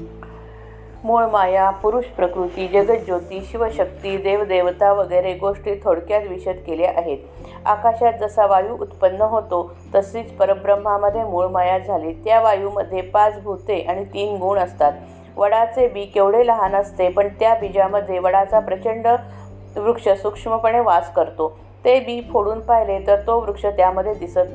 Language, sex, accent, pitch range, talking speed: Marathi, female, native, 185-225 Hz, 125 wpm